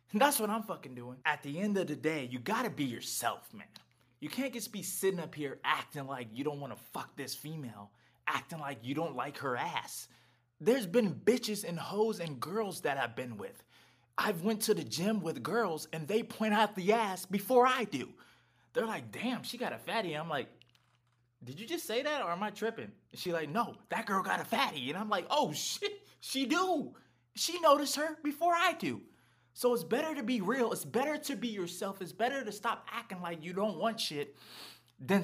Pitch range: 155-240 Hz